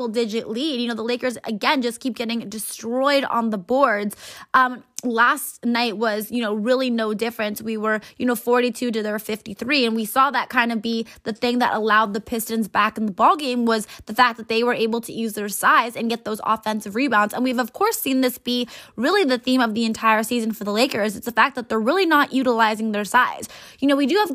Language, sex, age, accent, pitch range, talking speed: English, female, 20-39, American, 225-275 Hz, 240 wpm